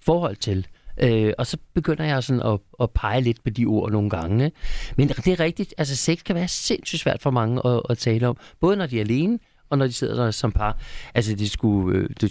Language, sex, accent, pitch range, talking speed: Danish, male, native, 110-150 Hz, 235 wpm